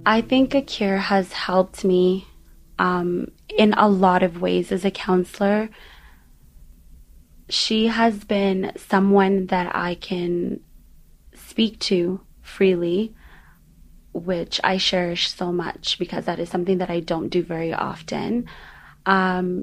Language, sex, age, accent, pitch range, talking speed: English, female, 20-39, American, 180-210 Hz, 125 wpm